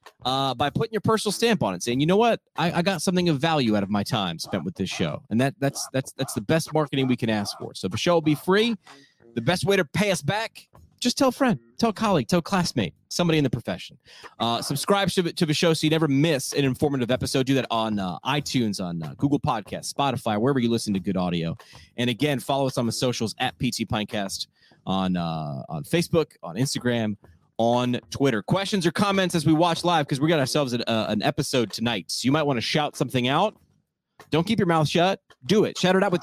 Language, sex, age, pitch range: English, male, 30-49, 120-165 Hz